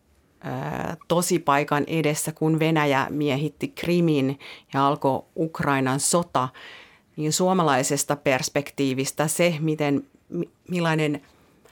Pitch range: 140-160 Hz